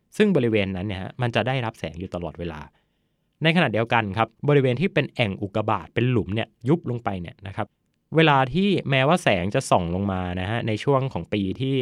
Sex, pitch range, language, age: male, 100-130 Hz, Thai, 20-39